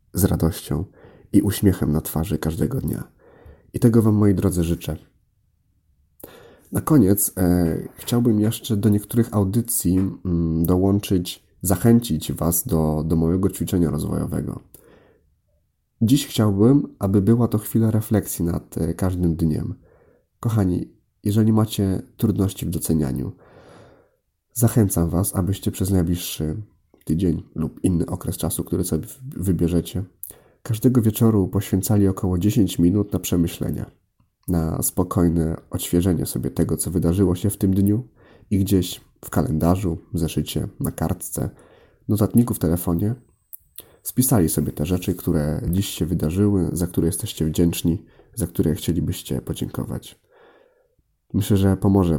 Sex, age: male, 30-49